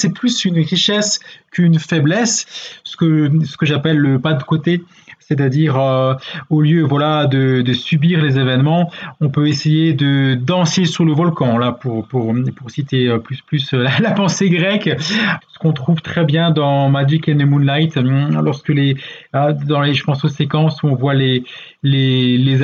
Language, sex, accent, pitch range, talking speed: French, male, French, 135-165 Hz, 180 wpm